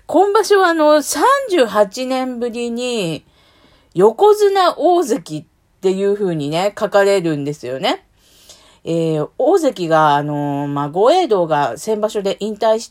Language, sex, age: Japanese, female, 40-59